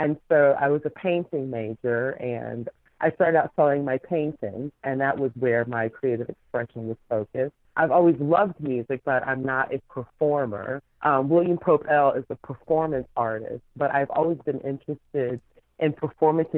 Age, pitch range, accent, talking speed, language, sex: 40-59, 130-155 Hz, American, 170 wpm, English, female